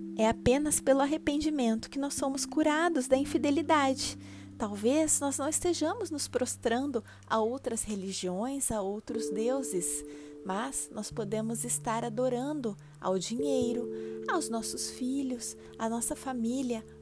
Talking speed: 125 wpm